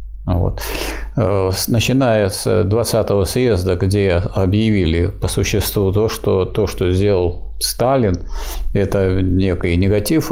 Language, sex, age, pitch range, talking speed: Russian, male, 50-69, 95-115 Hz, 105 wpm